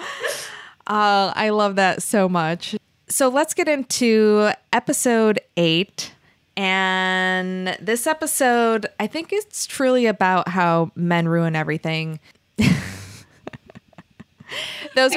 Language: English